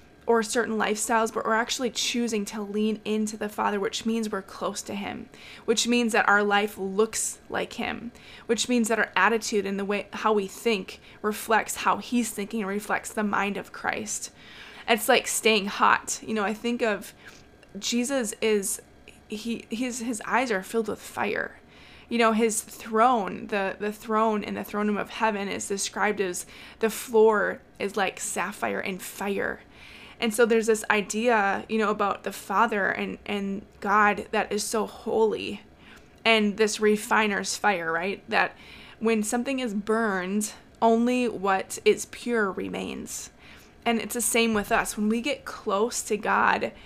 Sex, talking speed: female, 170 wpm